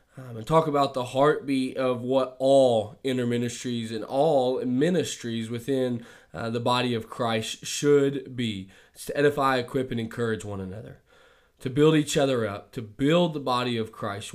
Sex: male